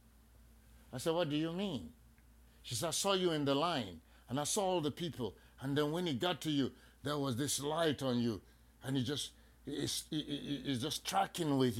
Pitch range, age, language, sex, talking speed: 115-155 Hz, 60-79, English, male, 210 wpm